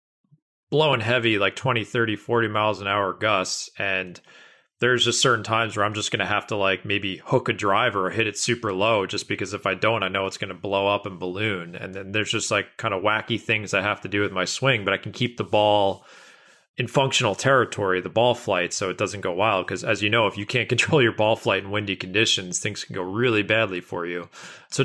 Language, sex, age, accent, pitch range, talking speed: English, male, 30-49, American, 100-120 Hz, 245 wpm